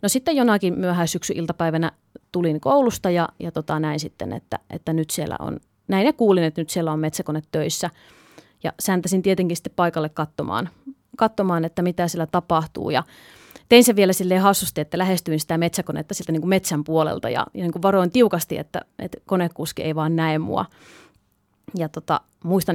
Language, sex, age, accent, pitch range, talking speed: Finnish, female, 30-49, native, 160-190 Hz, 175 wpm